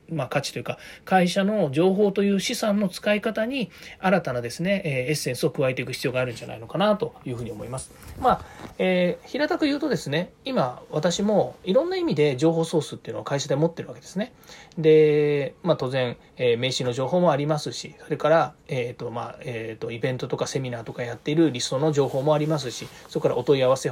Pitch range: 135-195 Hz